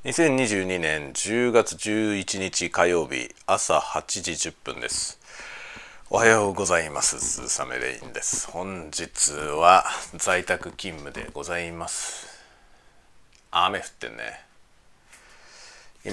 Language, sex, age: Japanese, male, 40-59